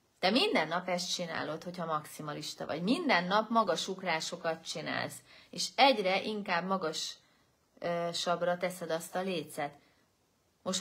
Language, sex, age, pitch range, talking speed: Hungarian, female, 30-49, 175-230 Hz, 120 wpm